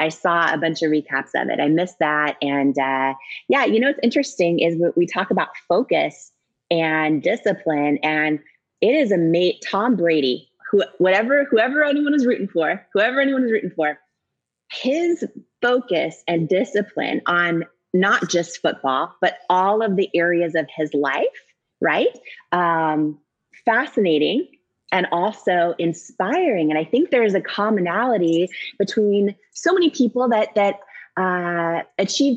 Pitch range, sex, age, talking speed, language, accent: 170-225 Hz, female, 30-49, 150 wpm, English, American